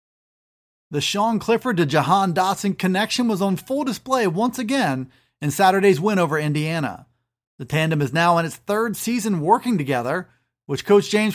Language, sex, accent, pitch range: English, male, American, 155-205 Hz